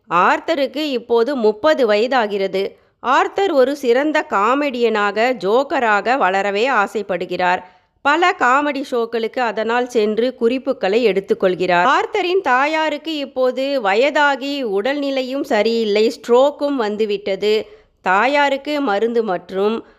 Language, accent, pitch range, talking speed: Tamil, native, 205-280 Hz, 85 wpm